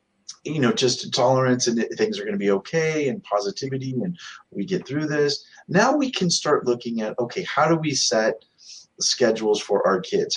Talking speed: 195 wpm